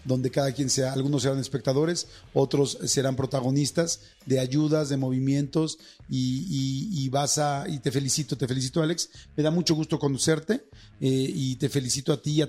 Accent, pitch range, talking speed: Mexican, 130-150 Hz, 175 wpm